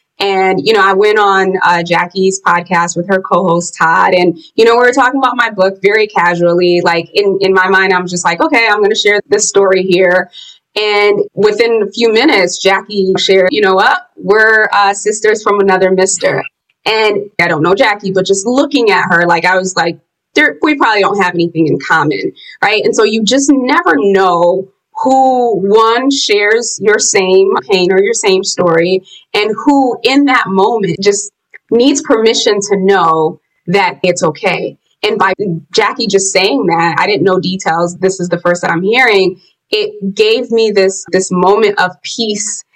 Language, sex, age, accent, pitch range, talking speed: English, female, 20-39, American, 175-215 Hz, 185 wpm